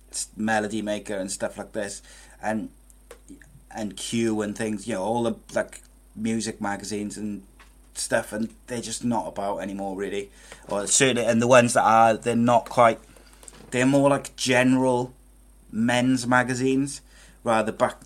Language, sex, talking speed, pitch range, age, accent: English, male, 150 wpm, 100-115 Hz, 30-49, British